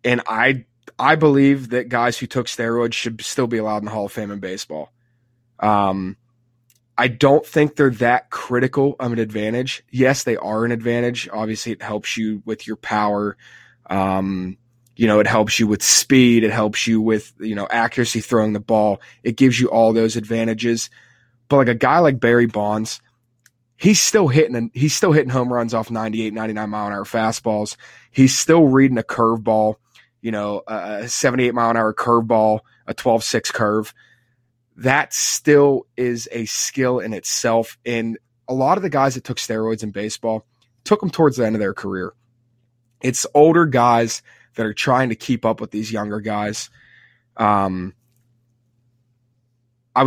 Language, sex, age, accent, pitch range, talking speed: English, male, 20-39, American, 110-125 Hz, 175 wpm